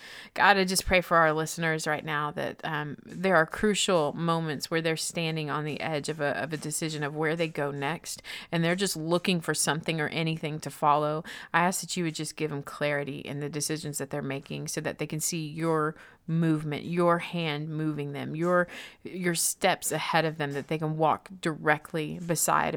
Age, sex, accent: 30-49, female, American